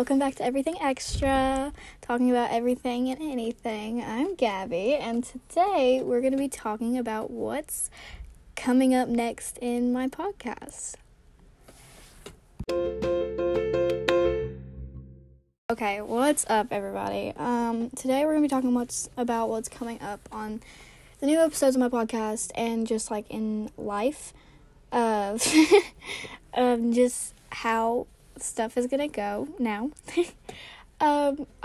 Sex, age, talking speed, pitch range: female, 10-29, 125 wpm, 220-260 Hz